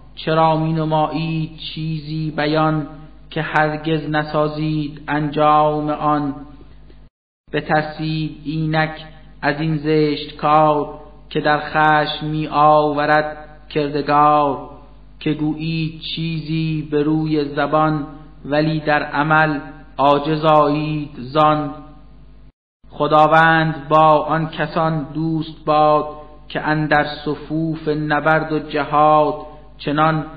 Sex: male